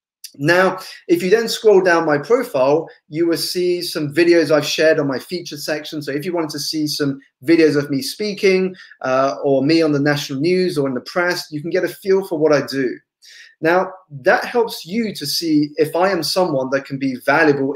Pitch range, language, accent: 145-190 Hz, English, British